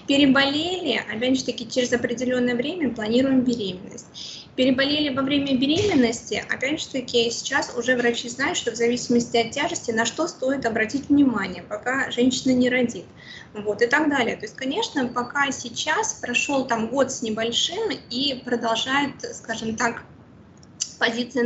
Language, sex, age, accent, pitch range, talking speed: Russian, female, 20-39, native, 235-275 Hz, 150 wpm